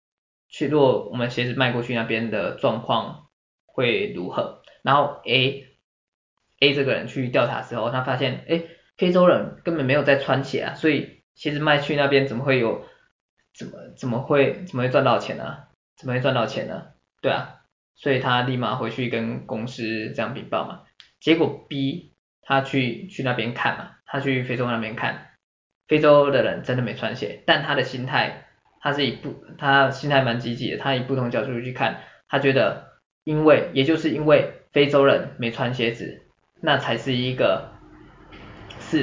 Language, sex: Chinese, male